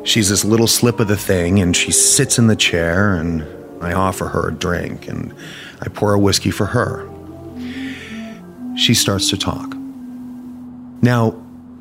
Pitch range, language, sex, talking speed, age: 95-125 Hz, English, male, 160 wpm, 30-49